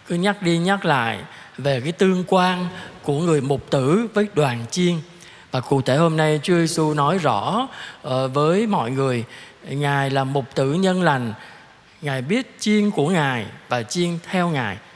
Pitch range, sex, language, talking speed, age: 145-205 Hz, male, Vietnamese, 175 wpm, 20-39